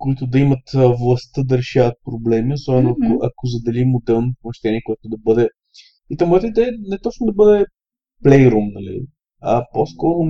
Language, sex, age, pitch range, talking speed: Bulgarian, male, 20-39, 125-170 Hz, 165 wpm